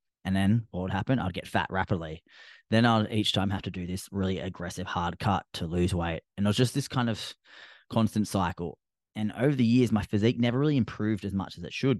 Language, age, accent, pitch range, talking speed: English, 20-39, Australian, 95-115 Hz, 235 wpm